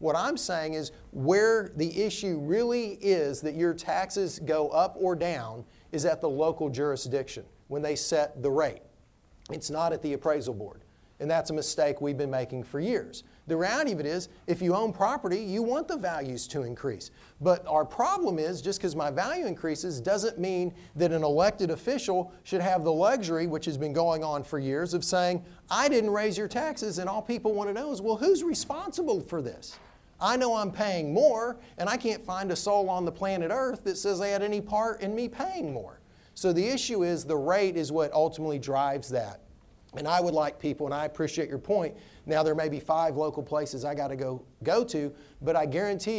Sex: male